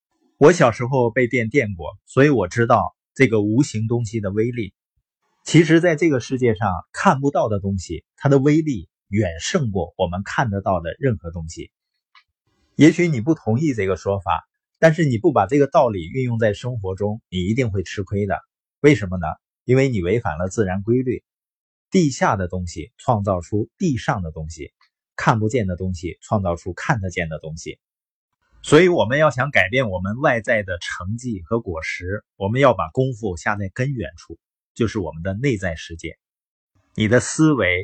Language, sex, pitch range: Chinese, male, 95-130 Hz